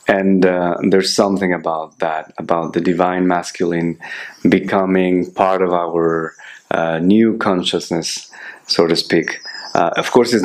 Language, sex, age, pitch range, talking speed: English, male, 30-49, 90-105 Hz, 140 wpm